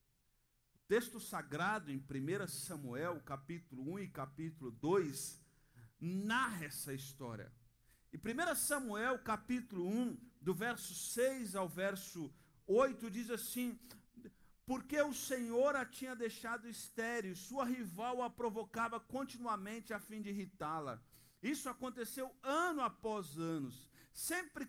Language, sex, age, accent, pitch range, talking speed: Portuguese, male, 50-69, Brazilian, 160-235 Hz, 115 wpm